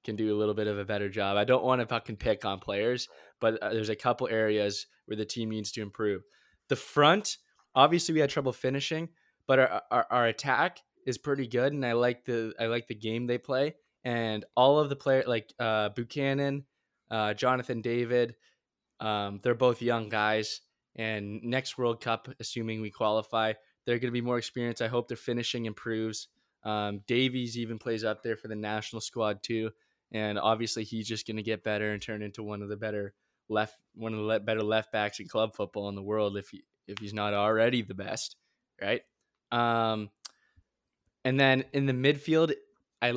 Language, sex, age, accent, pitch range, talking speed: English, male, 20-39, American, 110-125 Hz, 195 wpm